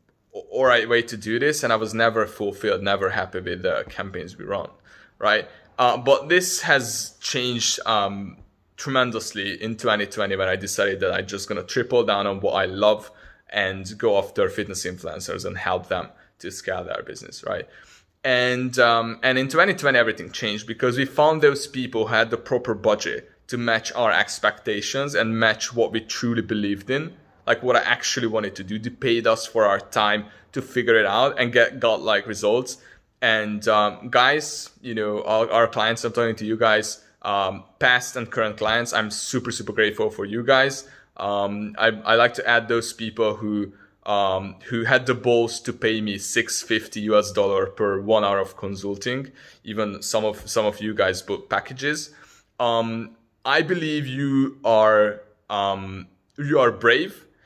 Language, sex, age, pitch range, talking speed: English, male, 20-39, 105-125 Hz, 180 wpm